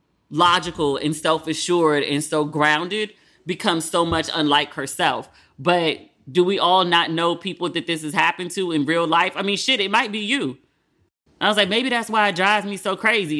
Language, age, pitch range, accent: English, 20-39, 155-210 Hz, American